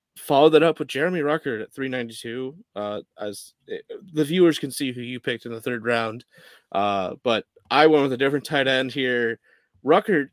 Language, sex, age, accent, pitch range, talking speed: English, male, 30-49, American, 120-145 Hz, 190 wpm